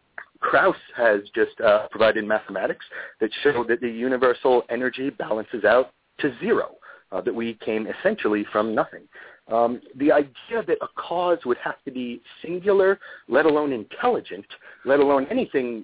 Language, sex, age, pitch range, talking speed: English, male, 40-59, 115-180 Hz, 150 wpm